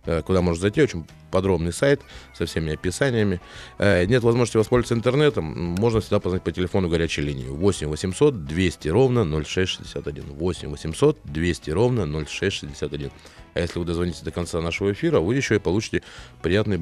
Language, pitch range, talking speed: Russian, 80-100 Hz, 155 wpm